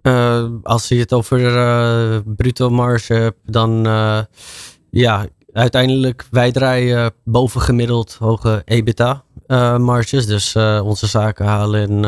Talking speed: 135 wpm